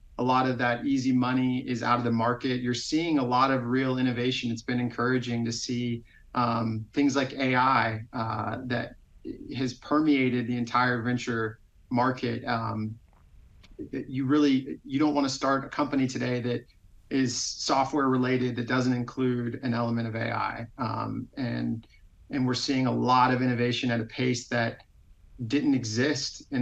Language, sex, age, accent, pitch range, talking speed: English, male, 30-49, American, 115-130 Hz, 160 wpm